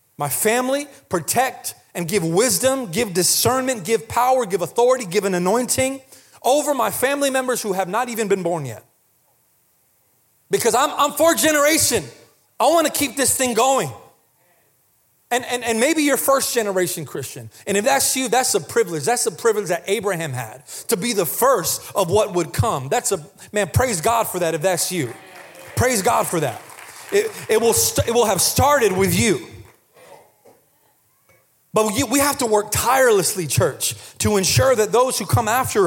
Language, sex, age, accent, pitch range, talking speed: English, male, 30-49, American, 195-265 Hz, 175 wpm